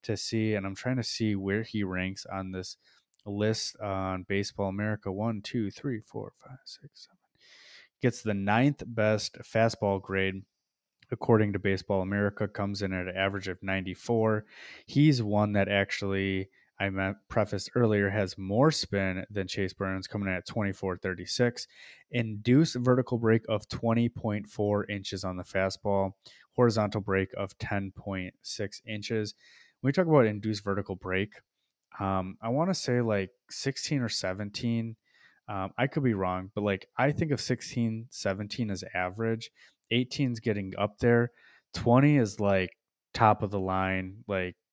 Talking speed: 155 wpm